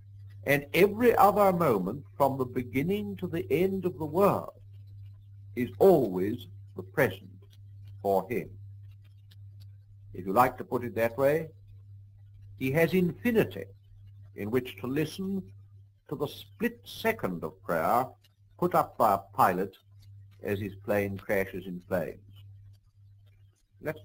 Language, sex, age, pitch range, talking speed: English, male, 60-79, 100-140 Hz, 130 wpm